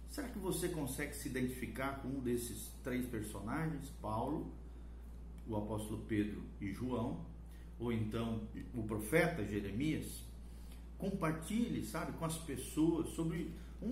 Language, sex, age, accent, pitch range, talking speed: Portuguese, male, 50-69, Brazilian, 105-165 Hz, 125 wpm